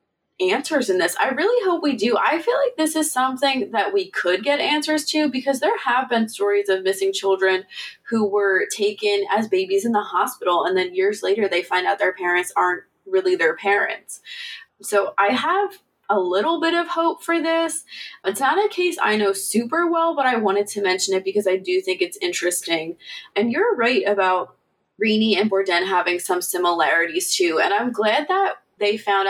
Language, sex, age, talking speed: English, female, 20-39, 195 wpm